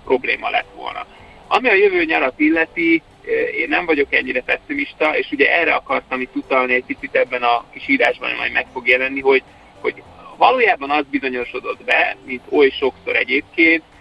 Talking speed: 170 wpm